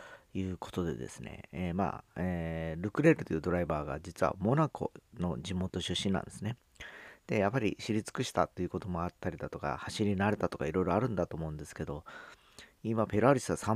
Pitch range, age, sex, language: 85-105 Hz, 40-59, male, Japanese